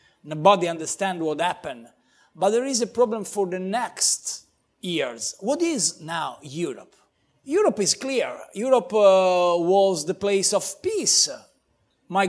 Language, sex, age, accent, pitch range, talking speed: English, male, 50-69, Italian, 180-225 Hz, 135 wpm